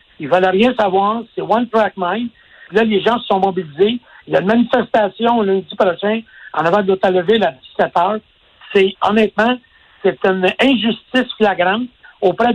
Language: French